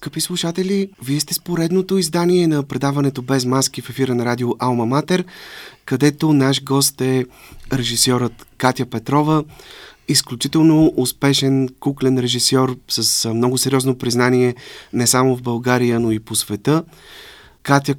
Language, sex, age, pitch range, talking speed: Bulgarian, male, 30-49, 115-135 Hz, 135 wpm